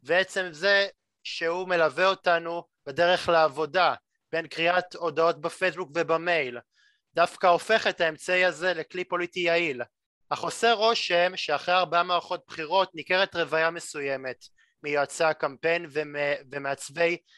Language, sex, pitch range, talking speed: Hebrew, male, 160-185 Hz, 115 wpm